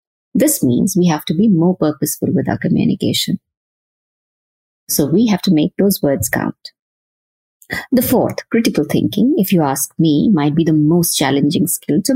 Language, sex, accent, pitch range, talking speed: English, female, Indian, 155-195 Hz, 170 wpm